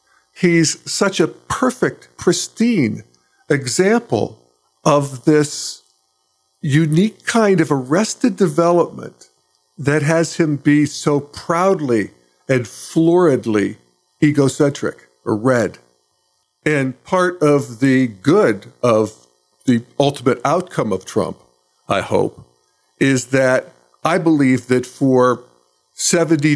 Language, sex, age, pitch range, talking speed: English, male, 50-69, 110-155 Hz, 100 wpm